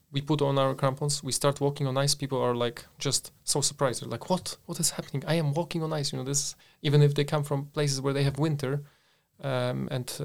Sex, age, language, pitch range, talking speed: male, 30-49, English, 125-150 Hz, 250 wpm